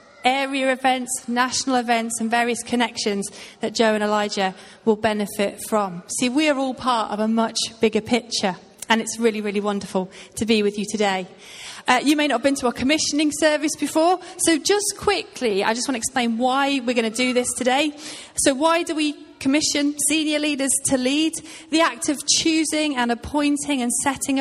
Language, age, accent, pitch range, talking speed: English, 30-49, British, 215-270 Hz, 190 wpm